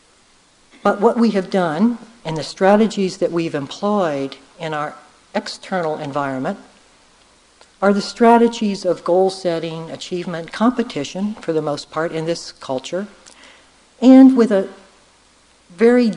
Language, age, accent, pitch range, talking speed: English, 60-79, American, 155-215 Hz, 125 wpm